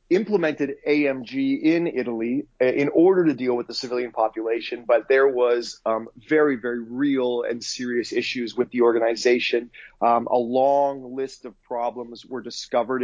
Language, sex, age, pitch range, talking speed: English, male, 30-49, 120-150 Hz, 150 wpm